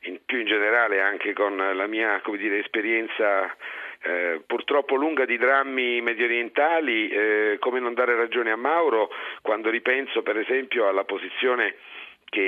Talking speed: 150 wpm